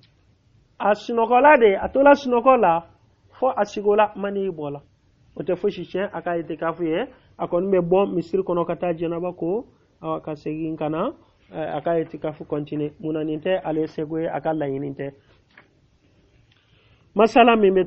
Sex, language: male, Finnish